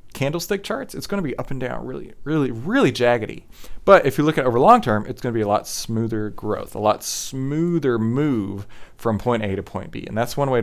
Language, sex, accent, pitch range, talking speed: English, male, American, 110-160 Hz, 250 wpm